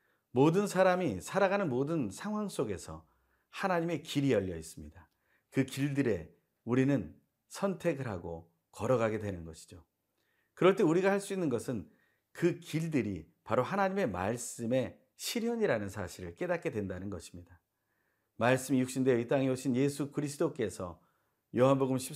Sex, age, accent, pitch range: male, 40-59, native, 100-155 Hz